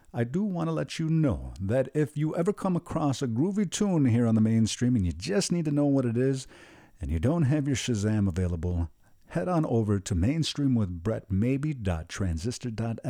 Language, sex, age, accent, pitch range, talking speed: English, male, 50-69, American, 100-145 Hz, 195 wpm